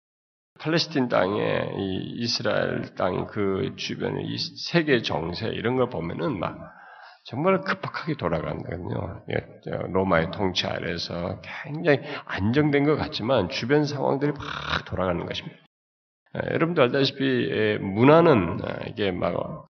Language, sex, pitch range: Korean, male, 115-150 Hz